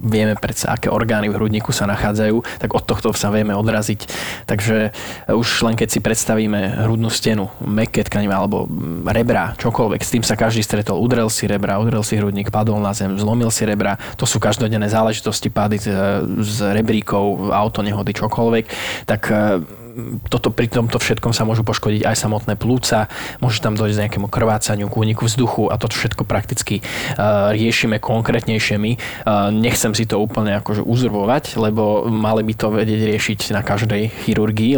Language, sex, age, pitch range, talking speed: Slovak, male, 20-39, 105-115 Hz, 160 wpm